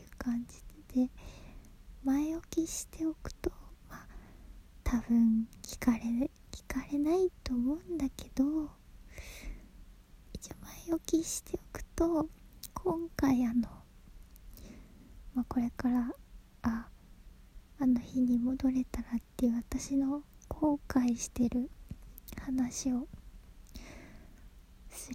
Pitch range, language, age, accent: 235-275 Hz, Japanese, 20-39, native